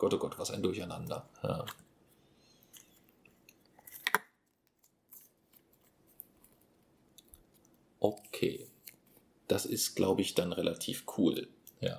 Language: German